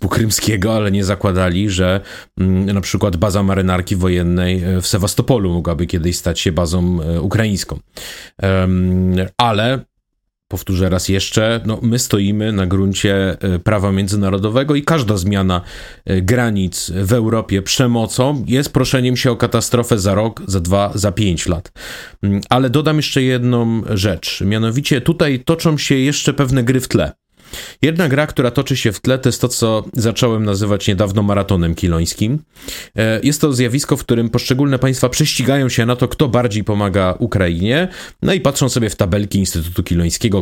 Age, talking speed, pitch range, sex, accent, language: 30-49, 150 wpm, 95-125 Hz, male, native, Polish